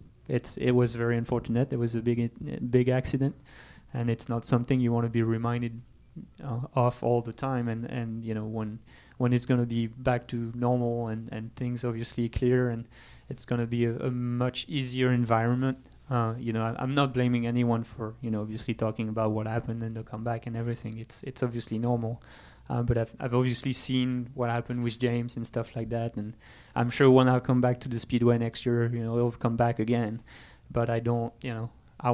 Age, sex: 20-39, male